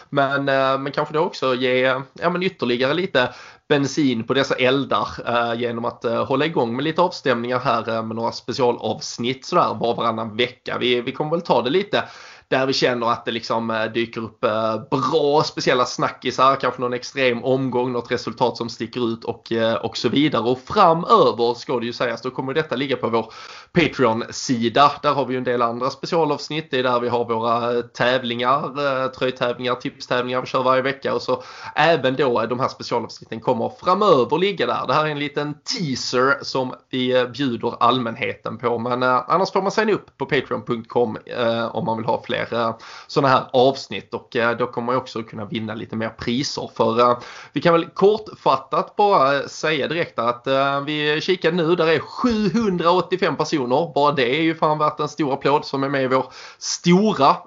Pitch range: 120-145 Hz